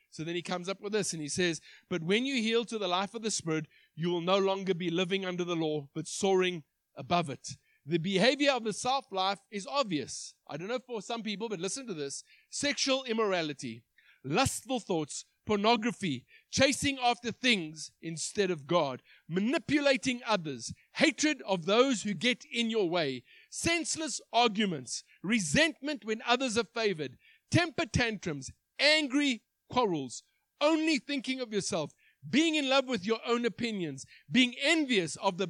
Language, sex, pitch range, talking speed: English, male, 180-250 Hz, 165 wpm